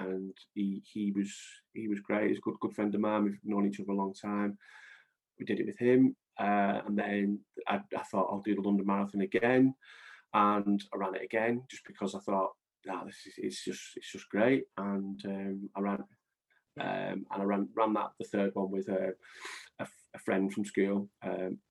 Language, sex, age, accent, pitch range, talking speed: English, male, 20-39, British, 95-105 Hz, 205 wpm